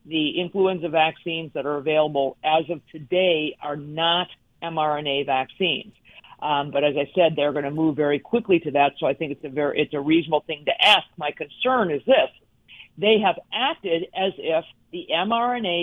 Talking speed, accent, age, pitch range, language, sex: 185 wpm, American, 50-69, 160-215 Hz, English, female